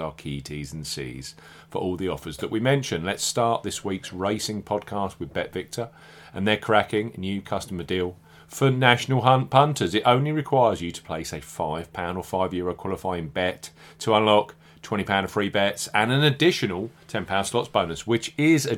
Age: 40-59